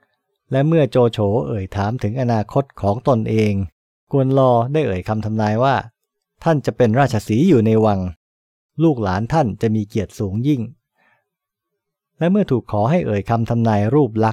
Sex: male